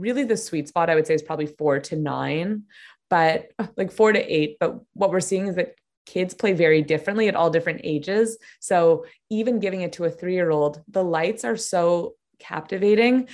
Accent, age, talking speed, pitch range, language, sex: American, 20-39, 195 wpm, 165-225 Hz, English, female